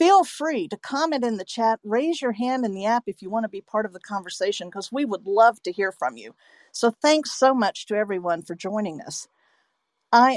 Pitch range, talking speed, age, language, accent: 205-250 Hz, 225 wpm, 50-69, English, American